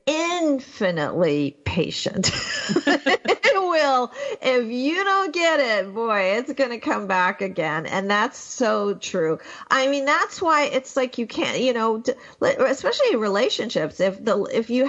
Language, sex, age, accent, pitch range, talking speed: English, female, 50-69, American, 190-270 Hz, 140 wpm